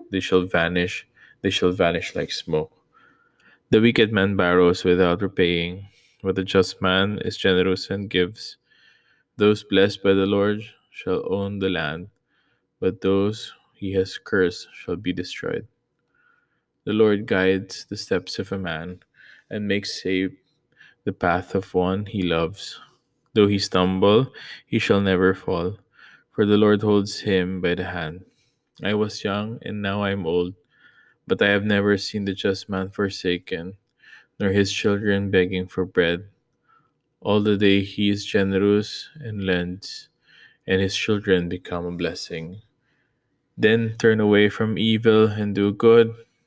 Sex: male